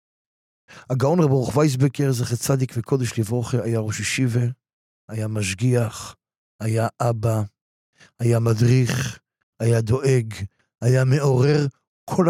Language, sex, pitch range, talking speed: Hebrew, male, 115-145 Hz, 105 wpm